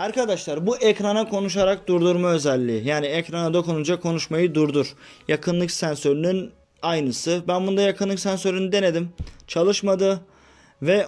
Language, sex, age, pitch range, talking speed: Turkish, male, 30-49, 150-185 Hz, 115 wpm